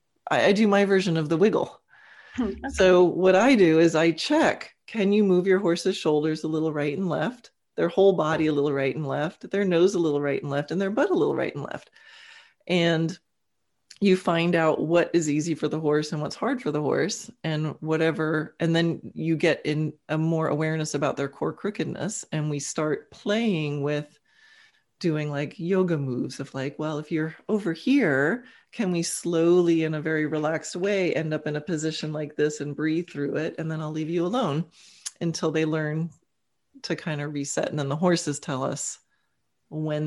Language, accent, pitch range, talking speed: English, American, 150-180 Hz, 200 wpm